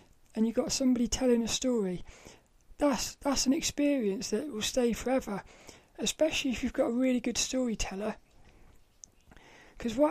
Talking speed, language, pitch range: 150 wpm, English, 225-275 Hz